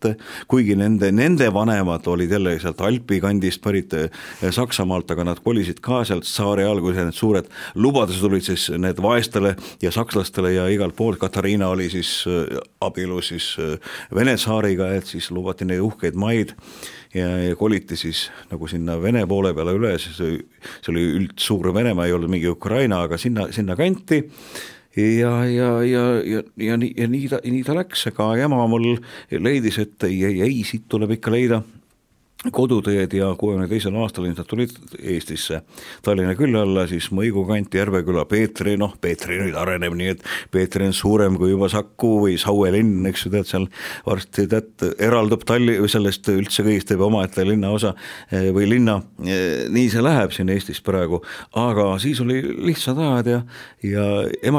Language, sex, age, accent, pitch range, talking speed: English, male, 50-69, Finnish, 95-115 Hz, 155 wpm